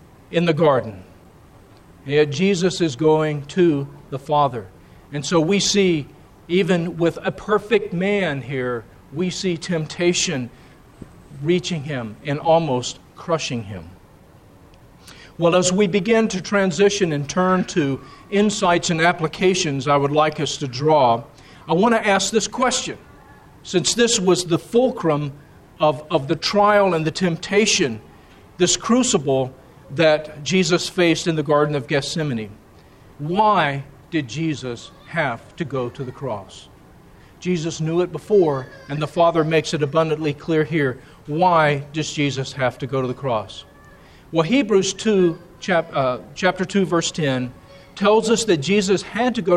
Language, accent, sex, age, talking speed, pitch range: English, American, male, 50-69, 145 wpm, 145-185 Hz